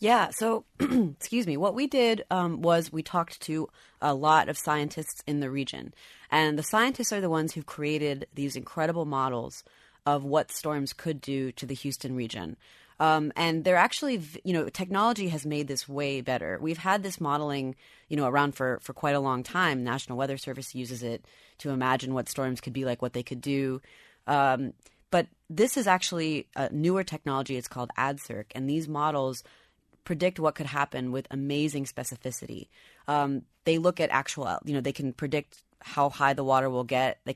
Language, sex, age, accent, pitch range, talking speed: English, female, 30-49, American, 125-155 Hz, 190 wpm